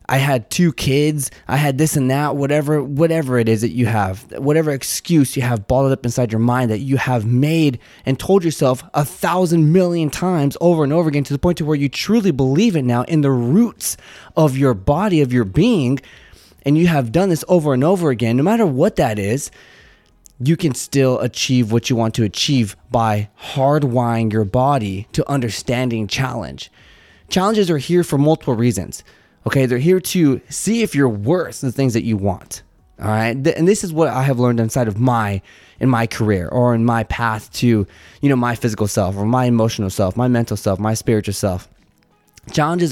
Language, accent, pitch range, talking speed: English, American, 115-150 Hz, 200 wpm